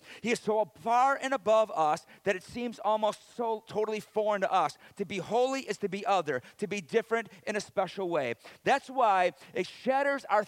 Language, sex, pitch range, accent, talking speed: English, male, 180-235 Hz, American, 200 wpm